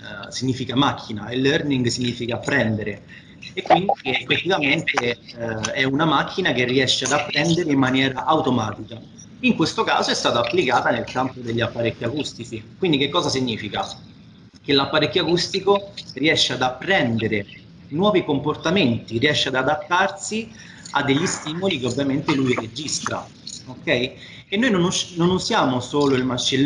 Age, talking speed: 30-49, 135 wpm